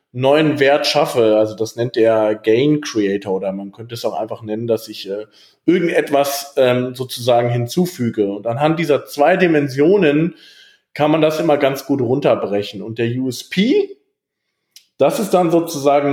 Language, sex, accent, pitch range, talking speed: German, male, German, 125-160 Hz, 155 wpm